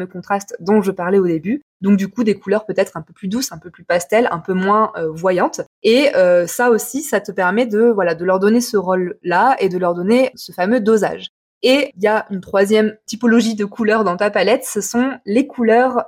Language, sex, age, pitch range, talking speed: French, female, 20-39, 200-245 Hz, 230 wpm